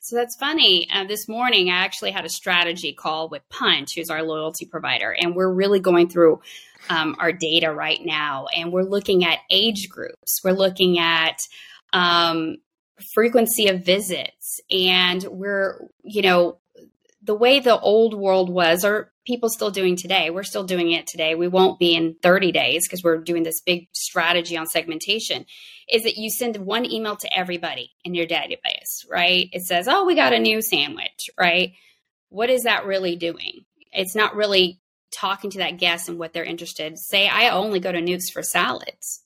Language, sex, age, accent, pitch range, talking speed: English, female, 20-39, American, 175-210 Hz, 185 wpm